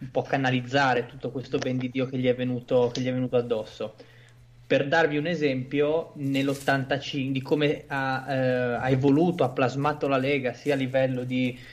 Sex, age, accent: male, 20-39, native